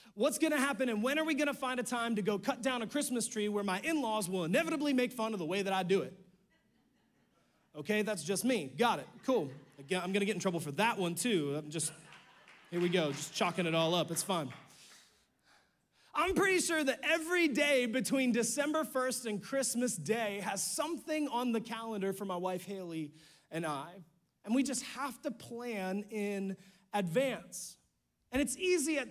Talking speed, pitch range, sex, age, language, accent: 200 wpm, 180-255 Hz, male, 30-49, English, American